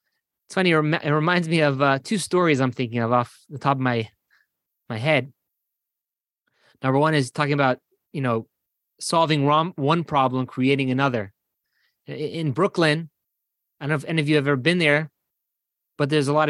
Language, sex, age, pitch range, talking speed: English, male, 20-39, 140-185 Hz, 180 wpm